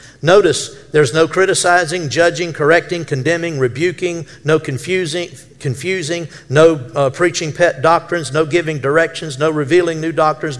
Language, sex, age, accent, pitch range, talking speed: English, male, 50-69, American, 130-160 Hz, 130 wpm